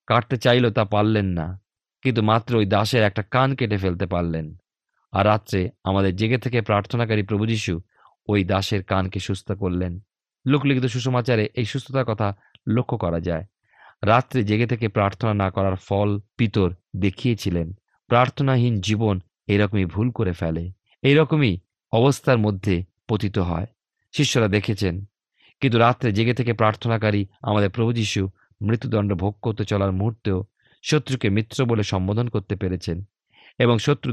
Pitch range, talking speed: 95-125 Hz, 130 wpm